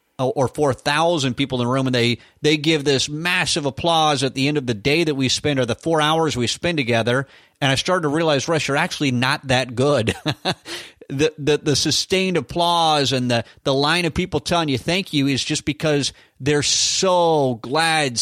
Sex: male